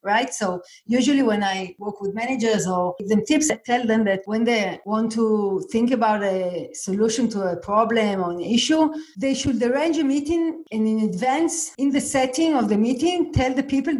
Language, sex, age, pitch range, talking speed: English, female, 50-69, 205-270 Hz, 200 wpm